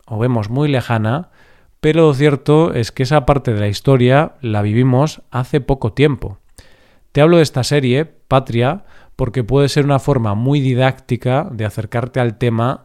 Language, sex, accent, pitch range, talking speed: Spanish, male, Spanish, 115-140 Hz, 170 wpm